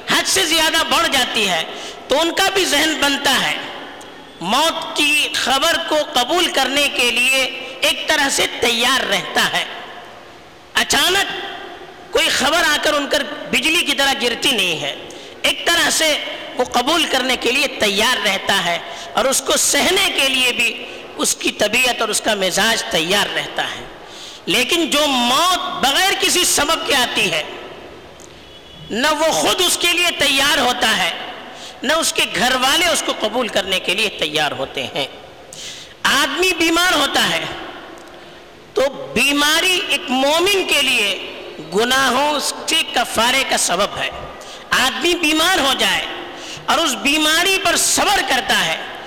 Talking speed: 155 wpm